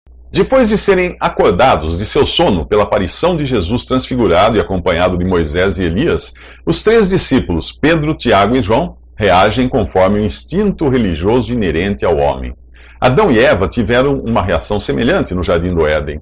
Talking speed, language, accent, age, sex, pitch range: 165 wpm, Portuguese, Brazilian, 50-69, male, 80-130 Hz